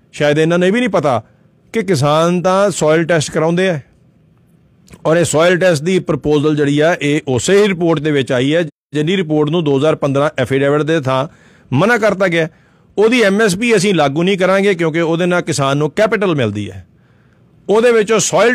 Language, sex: Punjabi, male